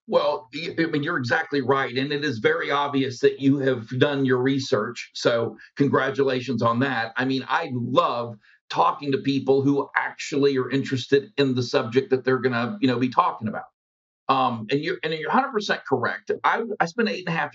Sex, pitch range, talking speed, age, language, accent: male, 130-180 Hz, 200 wpm, 50-69, English, American